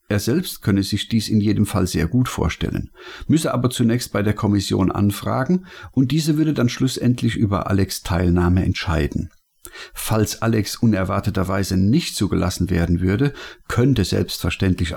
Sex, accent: male, German